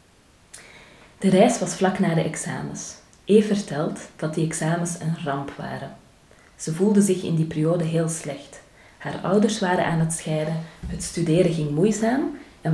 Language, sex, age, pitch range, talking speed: Dutch, female, 30-49, 155-190 Hz, 160 wpm